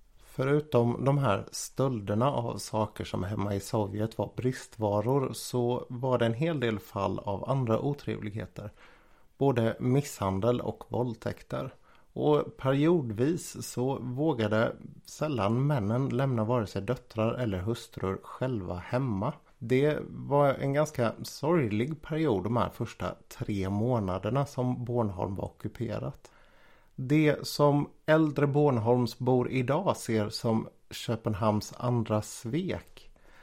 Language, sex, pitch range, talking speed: Swedish, male, 110-135 Hz, 115 wpm